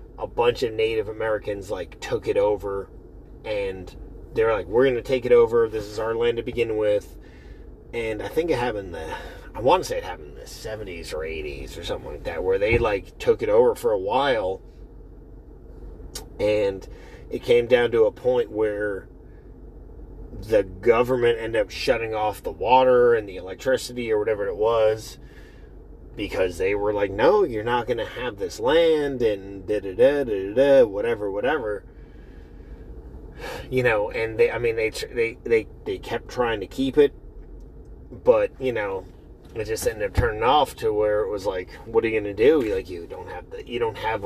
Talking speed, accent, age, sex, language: 190 wpm, American, 30-49, male, English